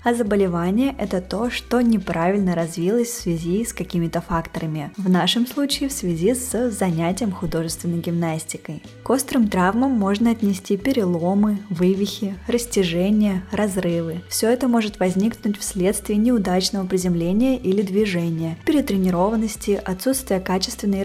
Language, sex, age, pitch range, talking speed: Russian, female, 20-39, 180-225 Hz, 125 wpm